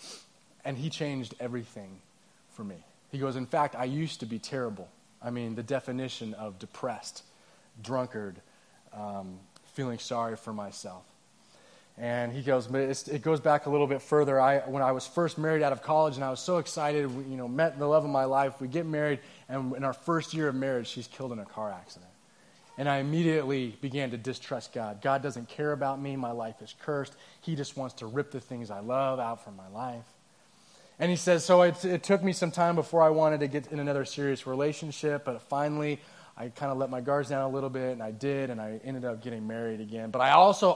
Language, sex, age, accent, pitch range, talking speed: English, male, 20-39, American, 125-155 Hz, 220 wpm